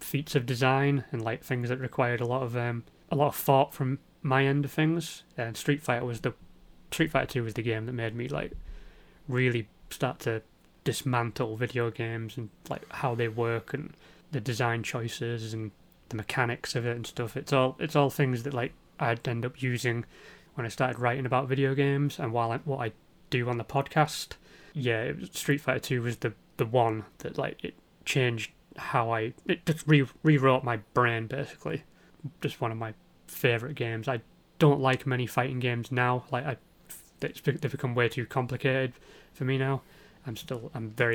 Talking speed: 190 wpm